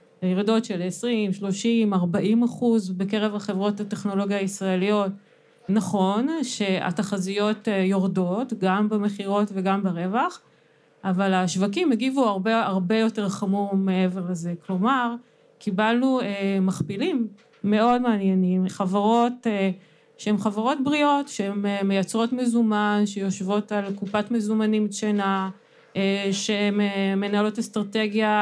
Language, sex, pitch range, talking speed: Hebrew, female, 195-225 Hz, 105 wpm